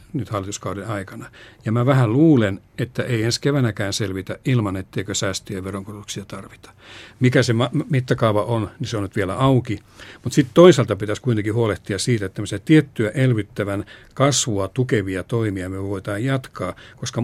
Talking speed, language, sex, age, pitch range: 155 wpm, Finnish, male, 60-79, 100-125 Hz